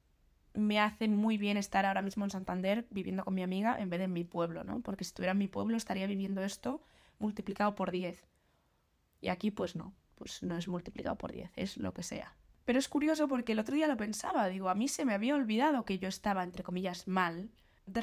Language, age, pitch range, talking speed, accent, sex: Spanish, 20-39, 190-260 Hz, 230 wpm, Spanish, female